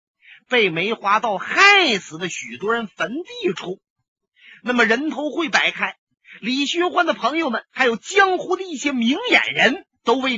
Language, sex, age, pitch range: Chinese, male, 30-49, 220-350 Hz